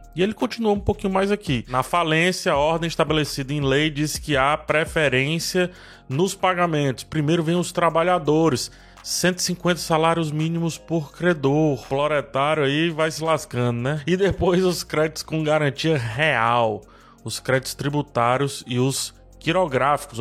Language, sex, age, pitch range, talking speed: Portuguese, male, 20-39, 125-160 Hz, 145 wpm